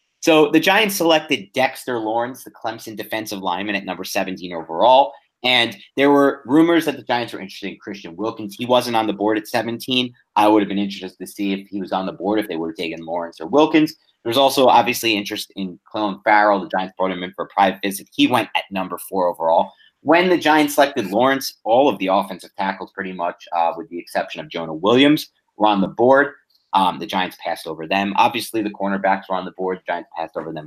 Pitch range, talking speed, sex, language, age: 95-125 Hz, 225 wpm, male, English, 30-49